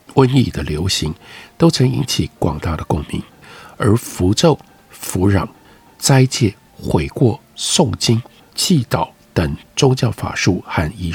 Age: 60-79